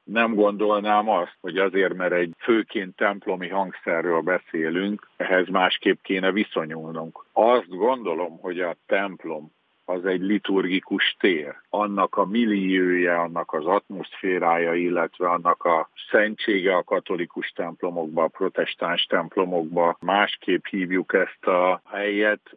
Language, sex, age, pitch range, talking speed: Hungarian, male, 50-69, 85-100 Hz, 120 wpm